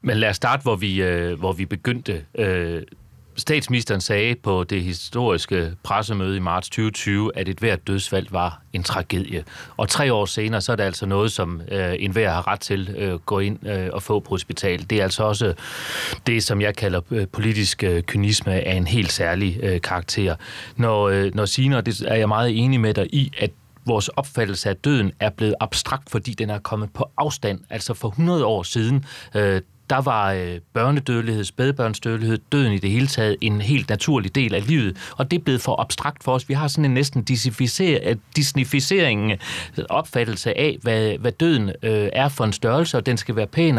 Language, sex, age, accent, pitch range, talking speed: Danish, male, 30-49, native, 100-130 Hz, 180 wpm